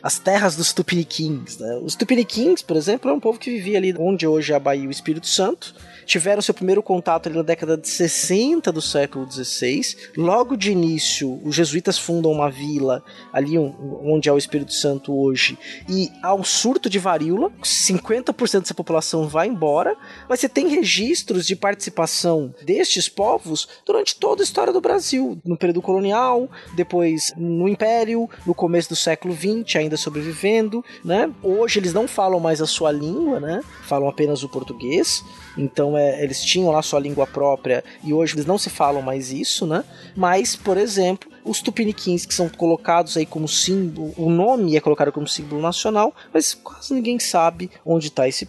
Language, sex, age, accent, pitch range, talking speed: Portuguese, male, 20-39, Brazilian, 155-205 Hz, 180 wpm